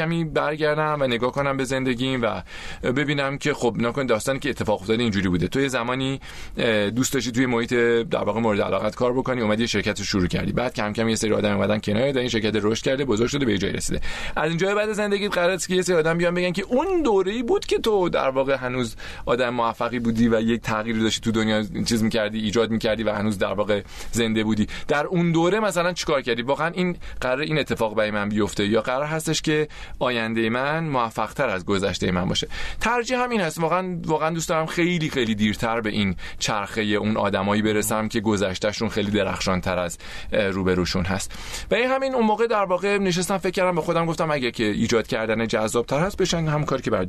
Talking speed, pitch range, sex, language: 220 wpm, 105-160 Hz, male, Persian